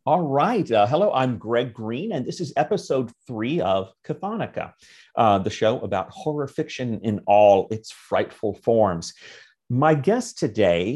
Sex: male